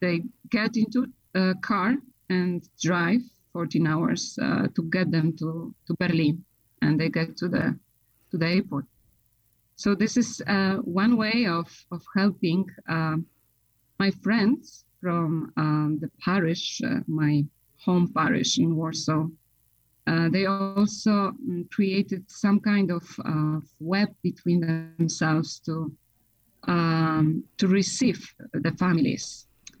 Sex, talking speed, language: female, 125 wpm, English